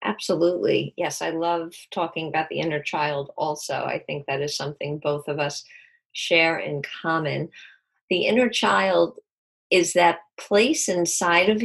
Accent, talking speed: American, 150 wpm